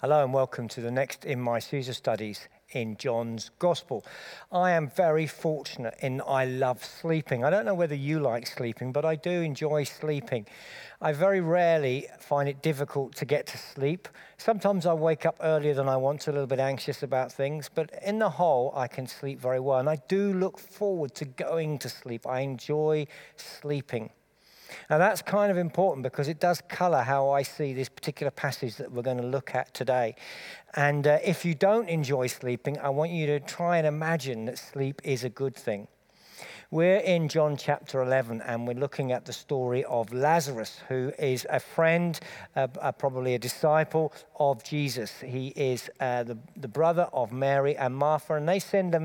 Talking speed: 190 wpm